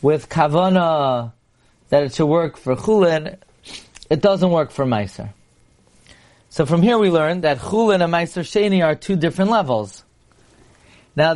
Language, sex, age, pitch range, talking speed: English, male, 30-49, 140-185 Hz, 150 wpm